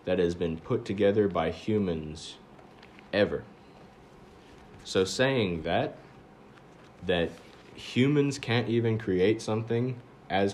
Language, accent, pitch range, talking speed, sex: English, American, 85-110 Hz, 100 wpm, male